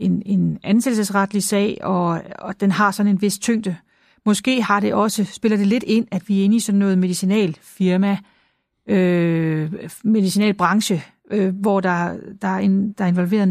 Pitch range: 190-215 Hz